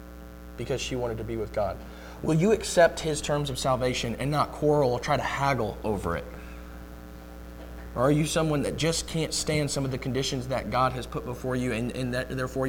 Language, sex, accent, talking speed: English, male, American, 215 wpm